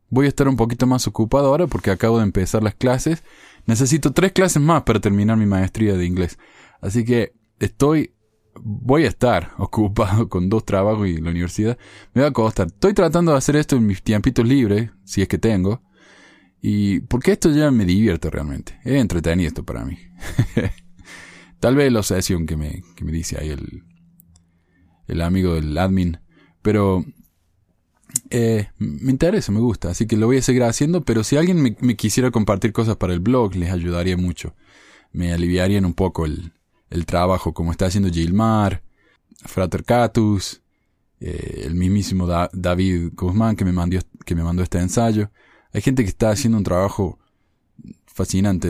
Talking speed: 175 wpm